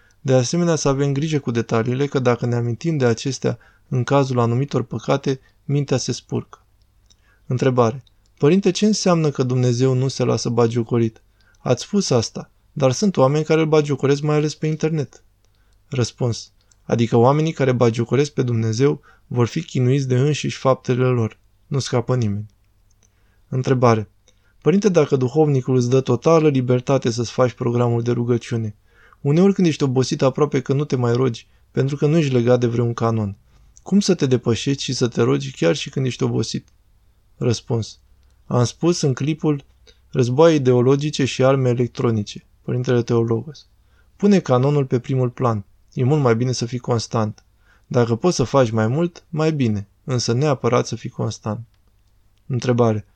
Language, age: Romanian, 20-39